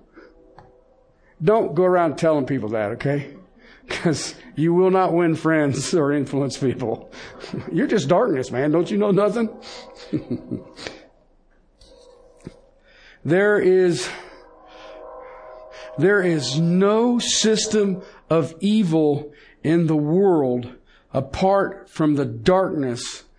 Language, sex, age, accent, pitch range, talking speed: English, male, 60-79, American, 135-190 Hz, 100 wpm